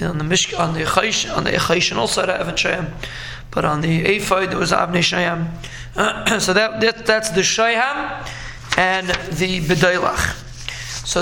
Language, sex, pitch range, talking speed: English, male, 160-195 Hz, 140 wpm